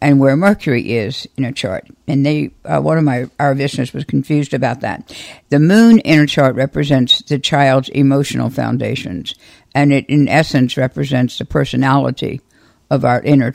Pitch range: 130-145 Hz